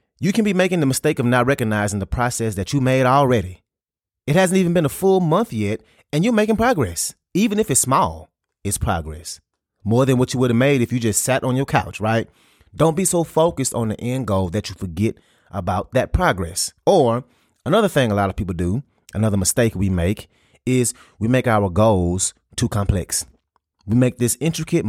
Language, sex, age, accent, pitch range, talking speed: English, male, 30-49, American, 95-130 Hz, 205 wpm